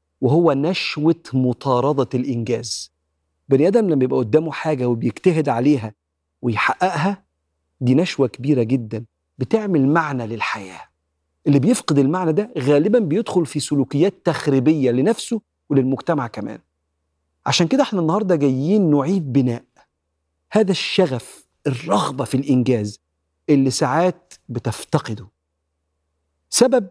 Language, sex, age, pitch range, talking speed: Arabic, male, 50-69, 110-160 Hz, 105 wpm